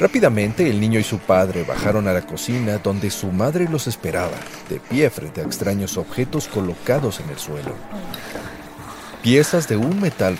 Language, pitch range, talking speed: Spanish, 95-120 Hz, 165 wpm